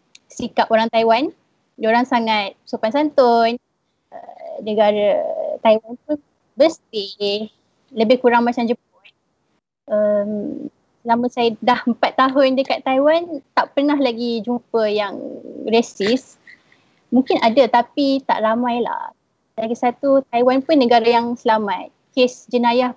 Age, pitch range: 20-39, 220-265 Hz